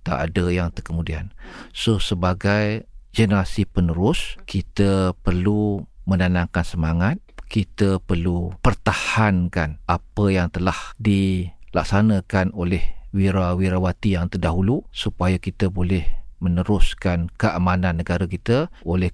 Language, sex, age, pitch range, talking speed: Malay, male, 40-59, 90-105 Hz, 95 wpm